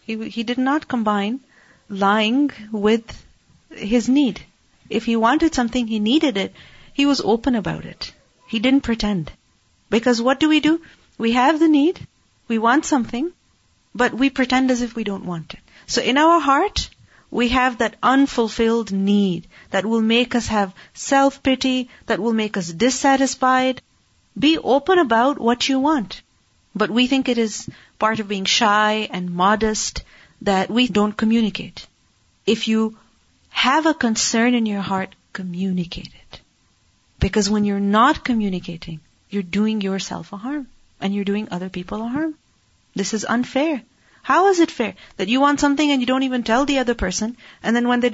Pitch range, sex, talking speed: 200-255 Hz, female, 170 wpm